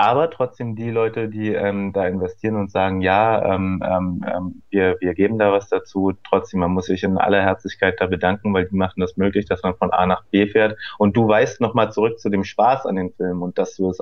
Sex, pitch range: male, 95-115 Hz